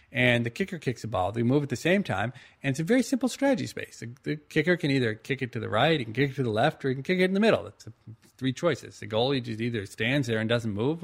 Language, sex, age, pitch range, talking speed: English, male, 40-59, 110-145 Hz, 305 wpm